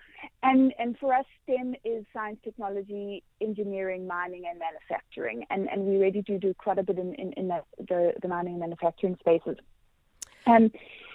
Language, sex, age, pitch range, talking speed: English, female, 30-49, 190-230 Hz, 170 wpm